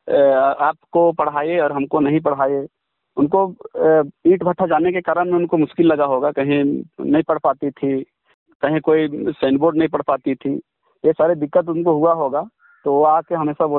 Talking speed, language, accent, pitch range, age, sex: 165 wpm, Hindi, native, 155-185 Hz, 50-69, male